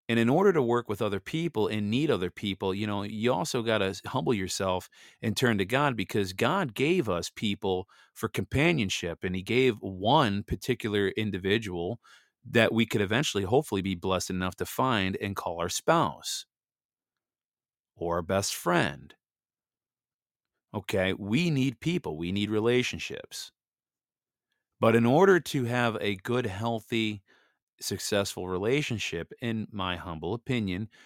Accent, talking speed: American, 145 wpm